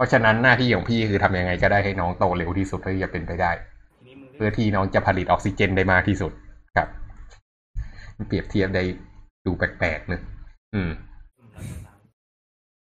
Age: 20-39